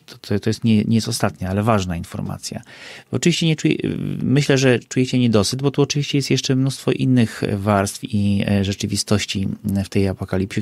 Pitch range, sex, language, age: 95-115 Hz, male, Polish, 40-59